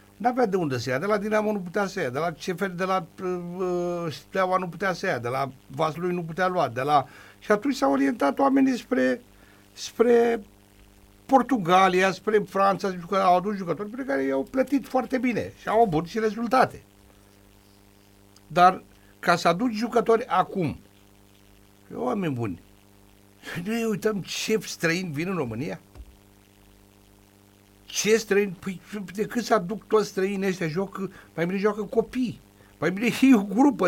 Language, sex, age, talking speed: Romanian, male, 60-79, 160 wpm